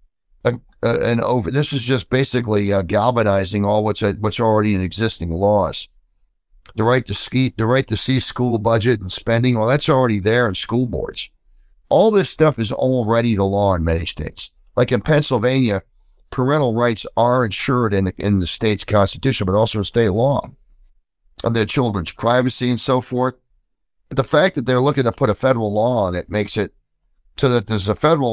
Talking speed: 190 wpm